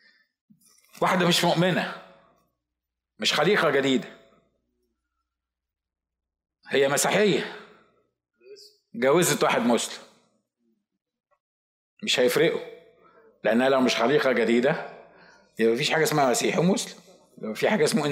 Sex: male